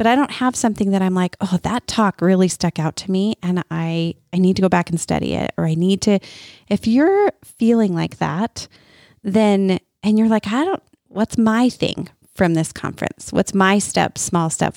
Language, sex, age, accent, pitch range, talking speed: English, female, 30-49, American, 170-215 Hz, 210 wpm